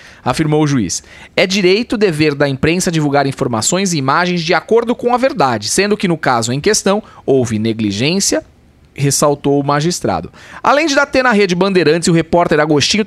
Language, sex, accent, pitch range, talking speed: Portuguese, male, Brazilian, 150-195 Hz, 175 wpm